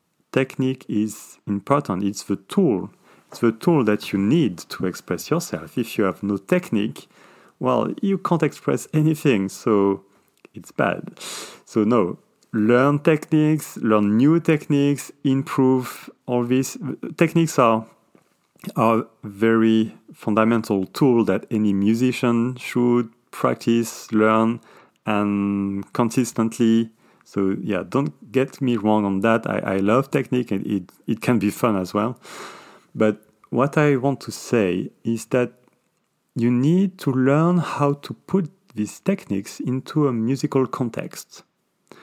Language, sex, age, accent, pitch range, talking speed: English, male, 40-59, French, 105-140 Hz, 135 wpm